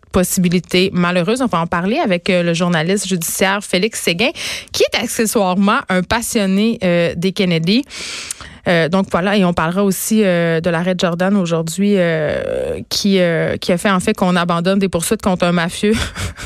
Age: 20-39